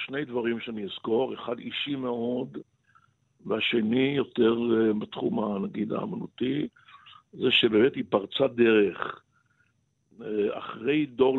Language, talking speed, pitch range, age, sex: Hebrew, 100 wpm, 115-145 Hz, 60-79, male